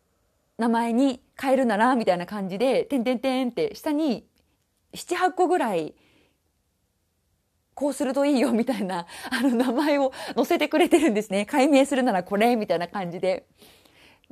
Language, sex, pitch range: Japanese, female, 205-305 Hz